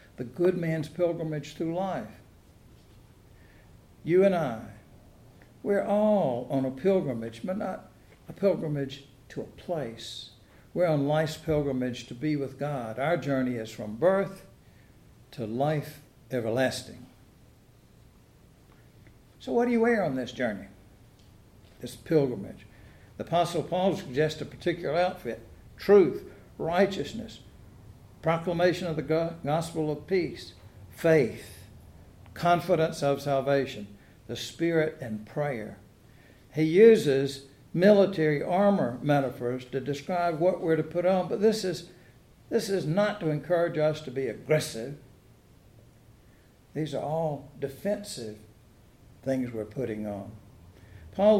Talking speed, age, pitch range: 120 wpm, 60-79, 115-165 Hz